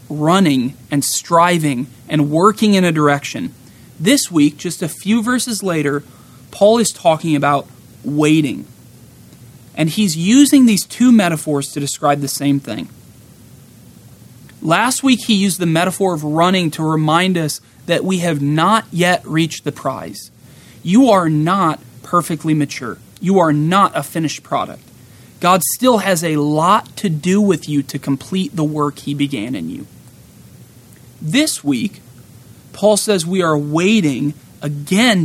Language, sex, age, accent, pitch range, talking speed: English, male, 30-49, American, 145-195 Hz, 145 wpm